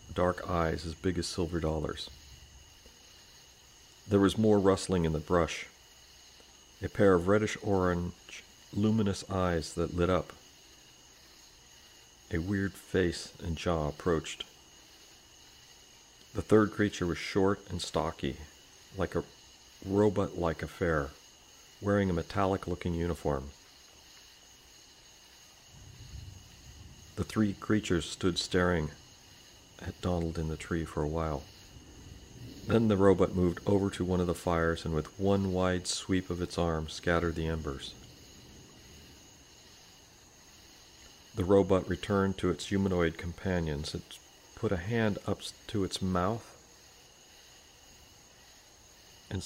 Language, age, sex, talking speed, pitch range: English, 50-69, male, 115 wpm, 80-95 Hz